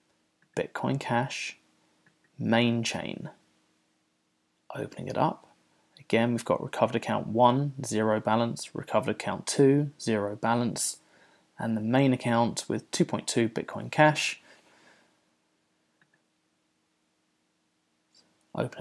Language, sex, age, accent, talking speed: English, male, 20-39, British, 95 wpm